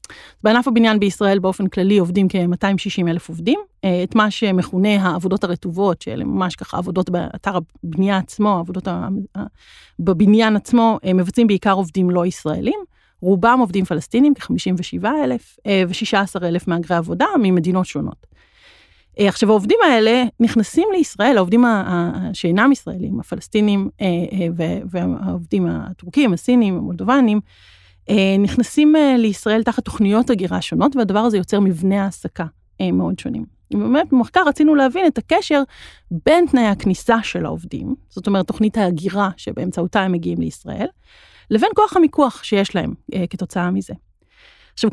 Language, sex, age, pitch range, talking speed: Hebrew, female, 30-49, 180-235 Hz, 125 wpm